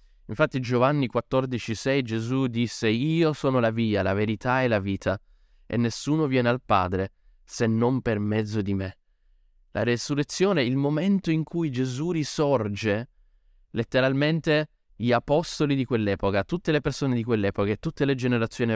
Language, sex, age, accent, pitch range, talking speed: Italian, male, 20-39, native, 100-130 Hz, 150 wpm